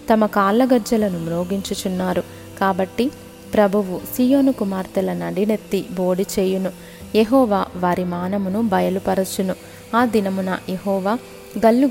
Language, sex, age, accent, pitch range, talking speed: Telugu, female, 20-39, native, 185-225 Hz, 90 wpm